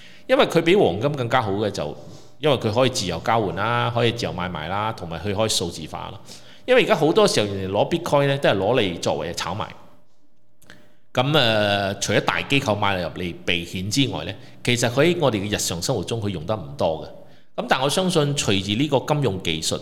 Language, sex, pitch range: Chinese, male, 95-130 Hz